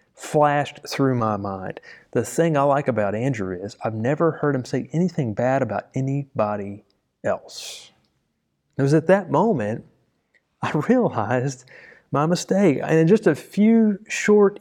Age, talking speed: 30-49, 150 wpm